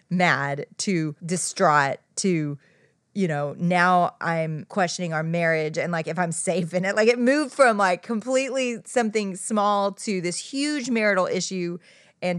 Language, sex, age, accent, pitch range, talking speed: English, female, 30-49, American, 160-215 Hz, 155 wpm